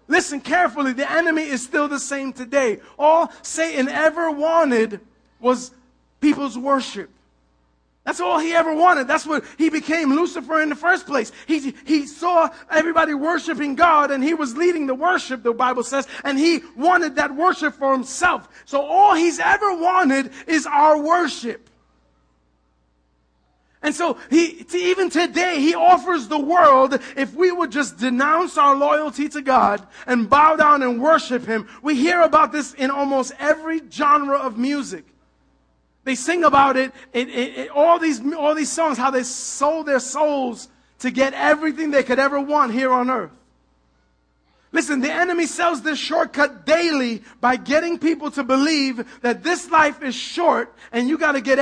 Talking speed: 165 wpm